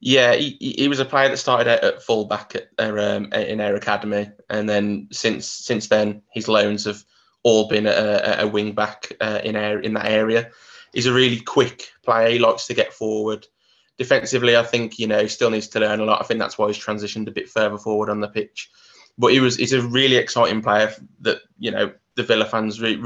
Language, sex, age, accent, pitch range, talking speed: English, male, 20-39, British, 105-115 Hz, 230 wpm